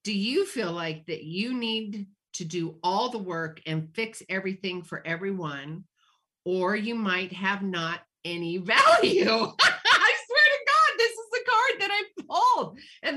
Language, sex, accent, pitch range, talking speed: English, female, American, 160-215 Hz, 165 wpm